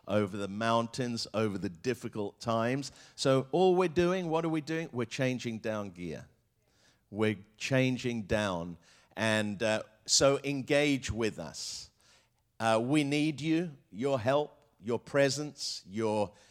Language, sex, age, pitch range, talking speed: English, male, 50-69, 110-135 Hz, 135 wpm